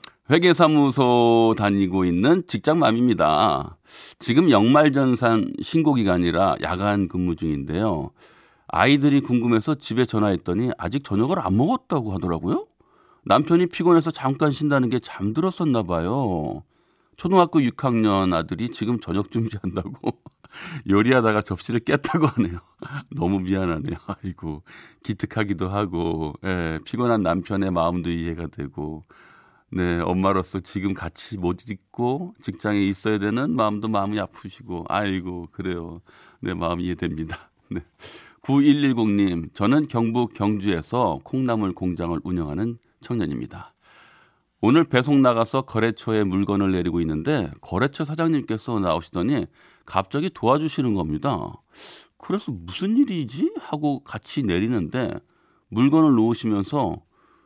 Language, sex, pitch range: Korean, male, 90-130 Hz